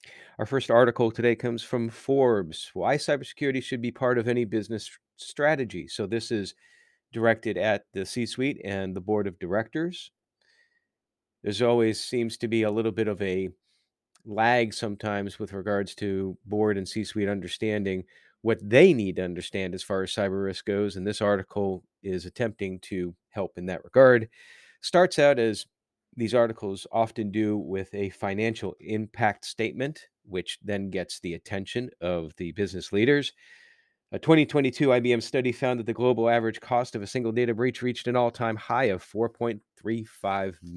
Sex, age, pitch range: male, 40-59, 100-120 Hz